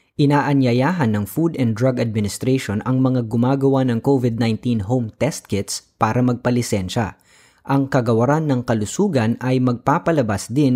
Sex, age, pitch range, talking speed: female, 20-39, 110-140 Hz, 130 wpm